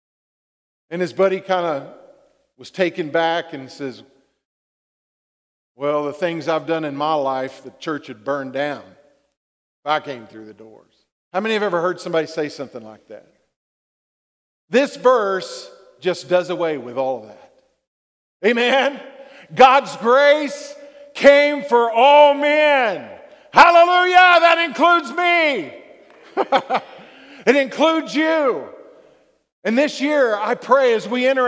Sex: male